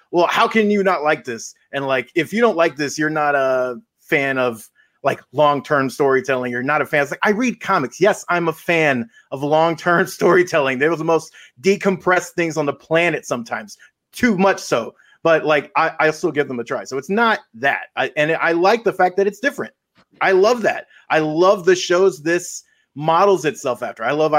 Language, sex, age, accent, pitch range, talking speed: English, male, 30-49, American, 140-180 Hz, 210 wpm